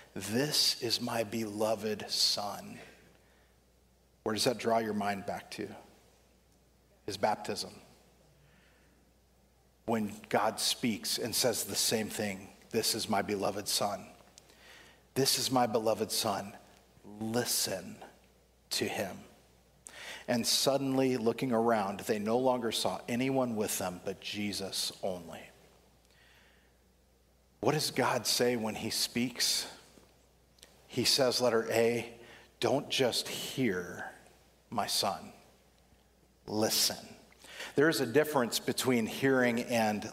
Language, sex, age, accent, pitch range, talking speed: English, male, 50-69, American, 100-120 Hz, 110 wpm